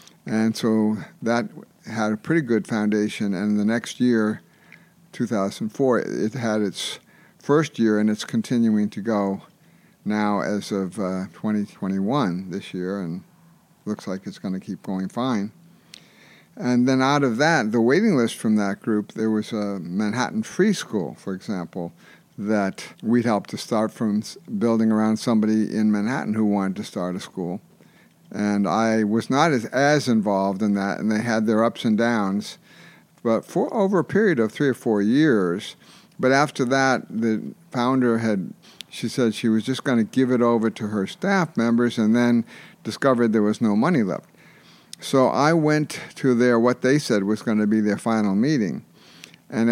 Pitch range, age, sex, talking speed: 105-130 Hz, 60-79, male, 175 wpm